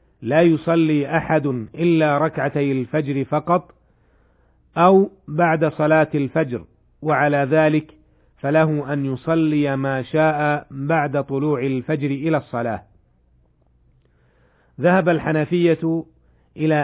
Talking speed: 95 wpm